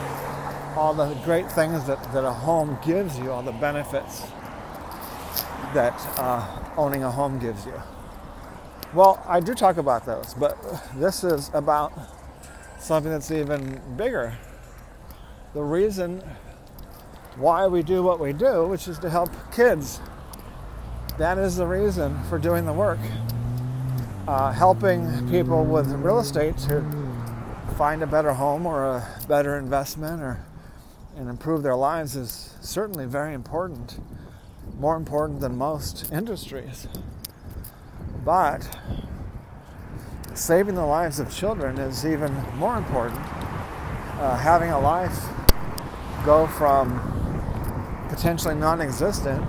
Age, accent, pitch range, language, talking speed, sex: 40-59, American, 125-160 Hz, English, 125 wpm, male